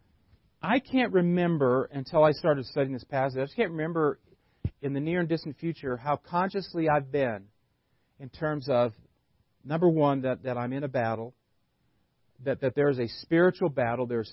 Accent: American